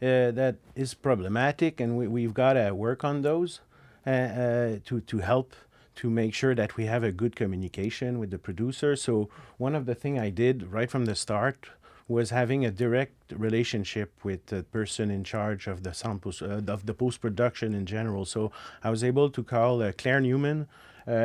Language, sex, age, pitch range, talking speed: English, male, 40-59, 110-140 Hz, 195 wpm